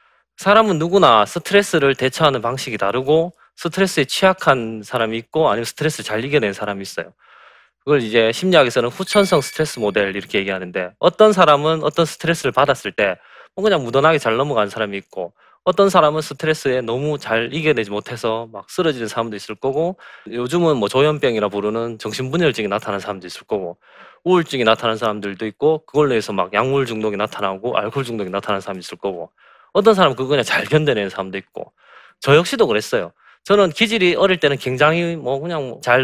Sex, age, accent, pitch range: male, 20-39, native, 110-160 Hz